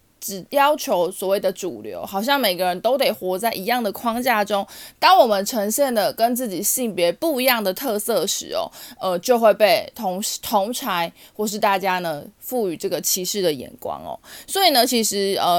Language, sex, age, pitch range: Chinese, female, 20-39, 185-245 Hz